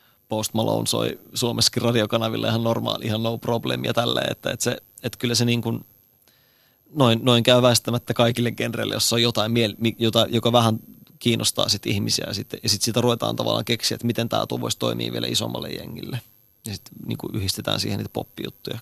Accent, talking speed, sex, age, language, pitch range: native, 180 wpm, male, 30-49, Finnish, 110-125 Hz